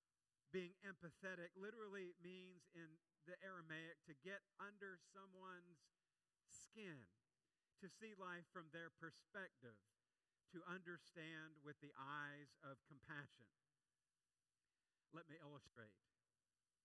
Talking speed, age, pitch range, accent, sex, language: 100 wpm, 50-69, 140-180 Hz, American, male, English